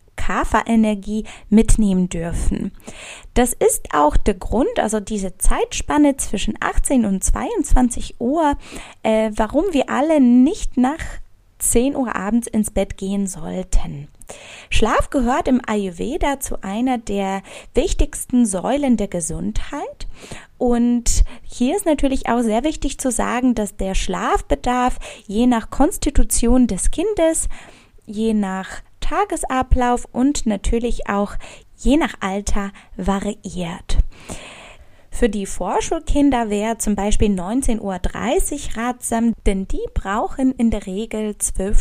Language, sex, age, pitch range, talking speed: German, female, 20-39, 205-285 Hz, 120 wpm